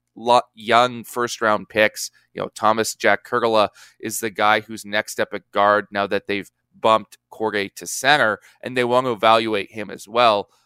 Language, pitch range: English, 110-130 Hz